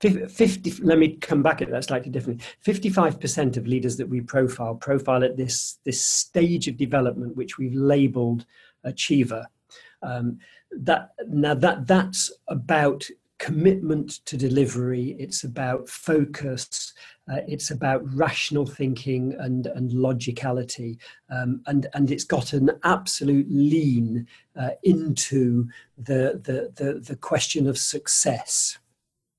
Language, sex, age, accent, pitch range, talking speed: English, male, 40-59, British, 130-155 Hz, 130 wpm